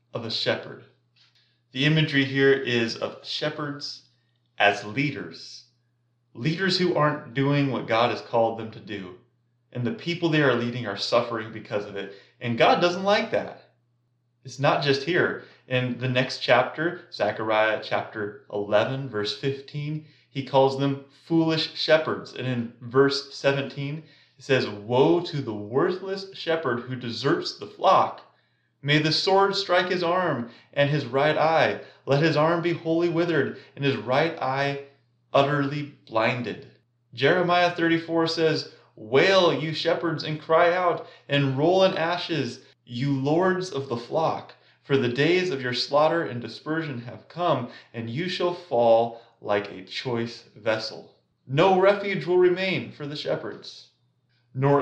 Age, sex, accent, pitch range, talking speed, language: 30-49, male, American, 120-160 Hz, 150 wpm, English